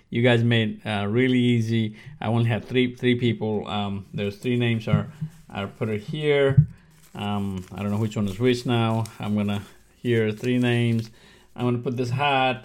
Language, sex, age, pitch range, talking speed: English, male, 30-49, 100-125 Hz, 190 wpm